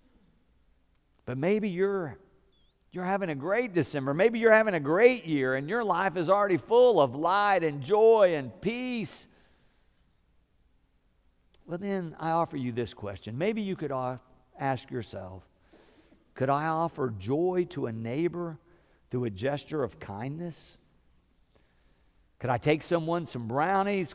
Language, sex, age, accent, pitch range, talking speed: English, male, 50-69, American, 130-185 Hz, 140 wpm